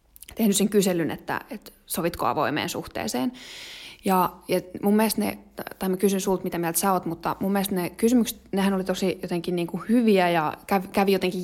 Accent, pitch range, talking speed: native, 170-200 Hz, 195 wpm